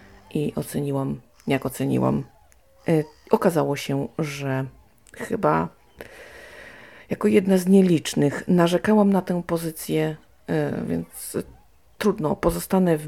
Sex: female